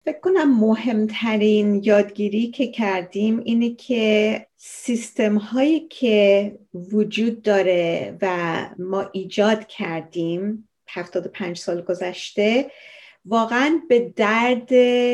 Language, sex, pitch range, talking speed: Persian, female, 200-250 Hz, 85 wpm